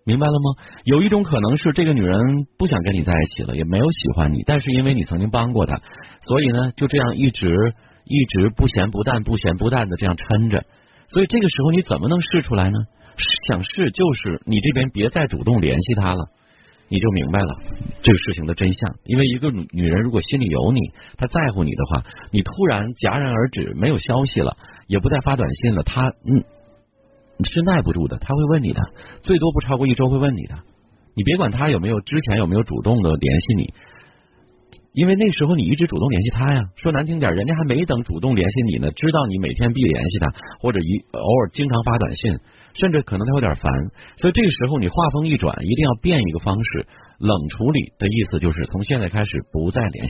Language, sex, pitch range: Chinese, male, 100-140 Hz